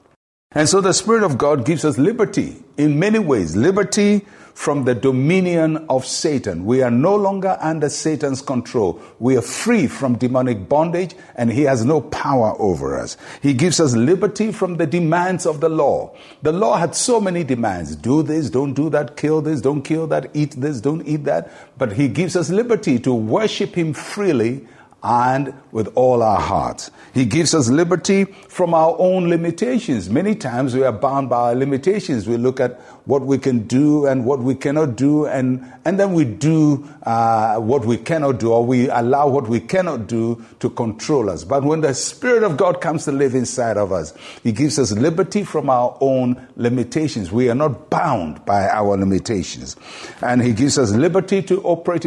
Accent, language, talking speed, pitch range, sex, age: Nigerian, English, 190 wpm, 125-170 Hz, male, 60-79